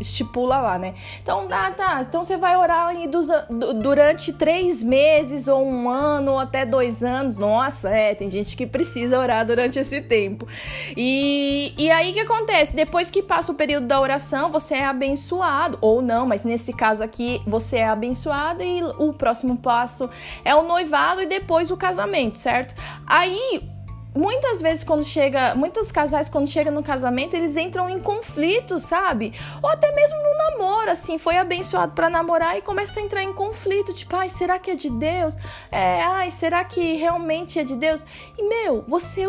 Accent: Brazilian